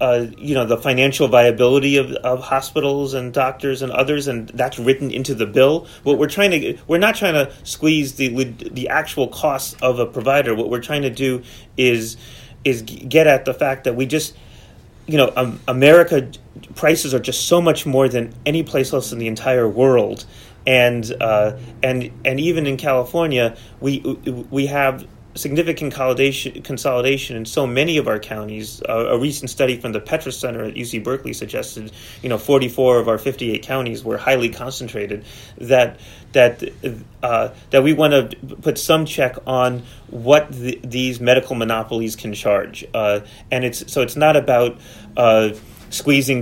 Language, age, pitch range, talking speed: English, 30-49, 120-140 Hz, 175 wpm